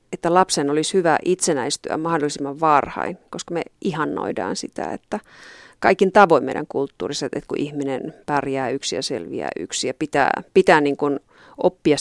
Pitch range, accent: 150-180 Hz, native